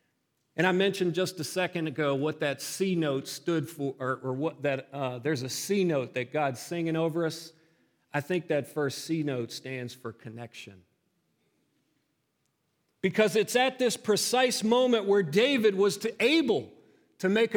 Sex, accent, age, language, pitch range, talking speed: male, American, 40-59, English, 145-200 Hz, 165 wpm